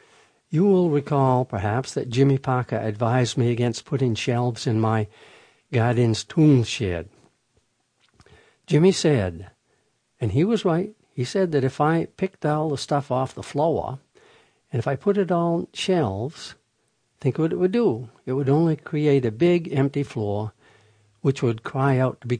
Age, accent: 60-79, American